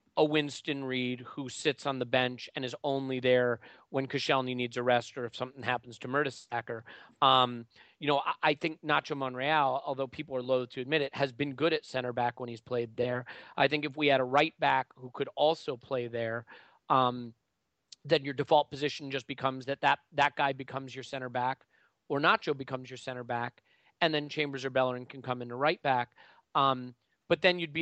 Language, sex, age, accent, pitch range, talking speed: English, male, 30-49, American, 130-150 Hz, 210 wpm